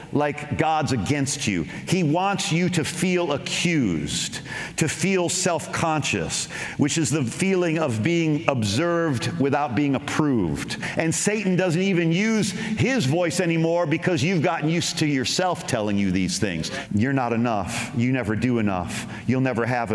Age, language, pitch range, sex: 40-59, English, 135-180 Hz, male